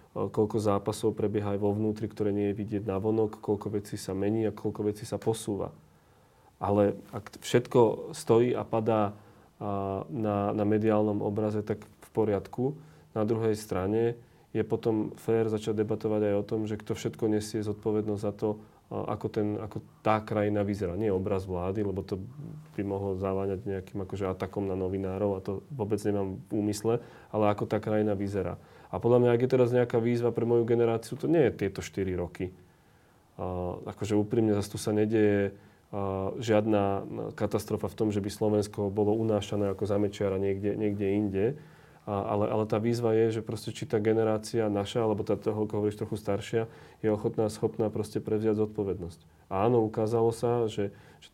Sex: male